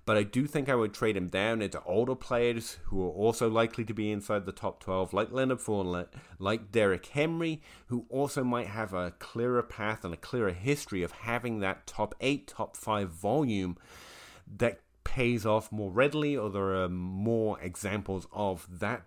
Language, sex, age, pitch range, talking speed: English, male, 30-49, 95-120 Hz, 185 wpm